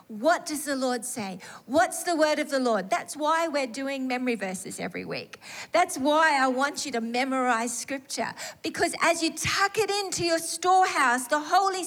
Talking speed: 185 wpm